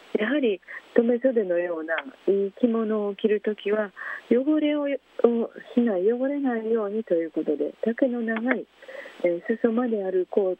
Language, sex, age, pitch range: Japanese, female, 40-59, 185-265 Hz